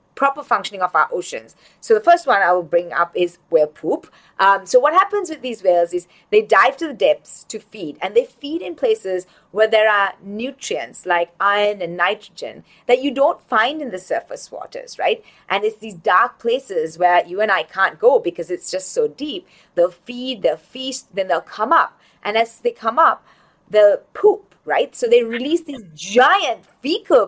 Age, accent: 30-49, Indian